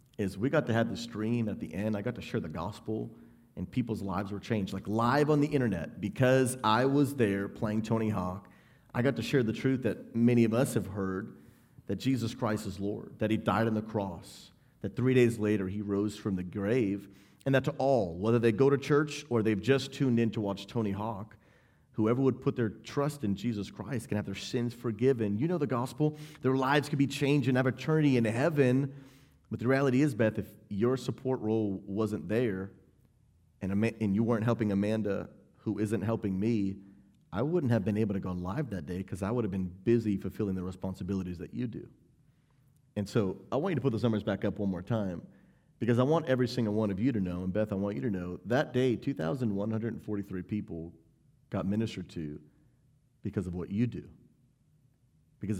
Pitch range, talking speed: 100-130 Hz, 210 wpm